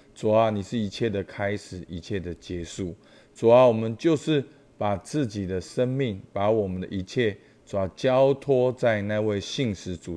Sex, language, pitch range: male, Chinese, 95-120 Hz